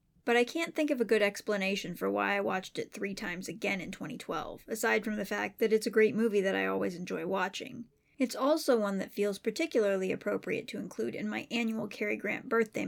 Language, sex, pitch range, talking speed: English, female, 195-240 Hz, 220 wpm